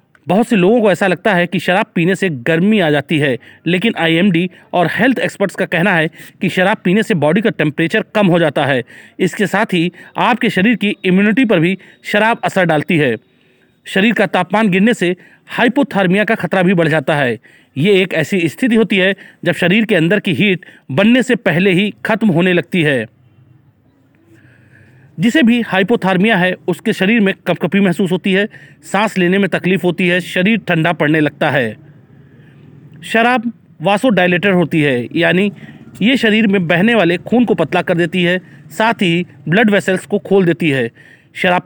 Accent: native